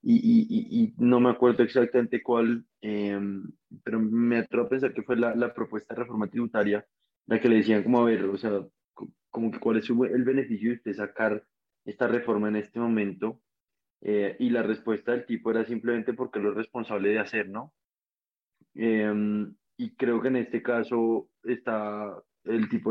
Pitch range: 105-120 Hz